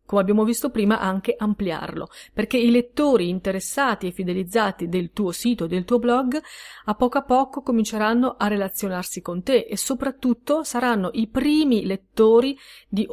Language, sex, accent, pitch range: Italian, female, native, 190-240 Hz